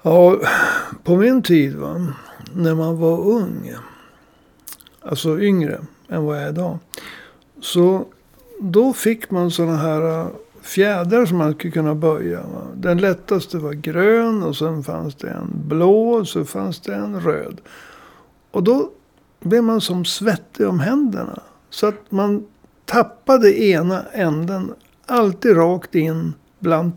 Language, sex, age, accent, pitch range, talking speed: Swedish, male, 60-79, native, 160-210 Hz, 140 wpm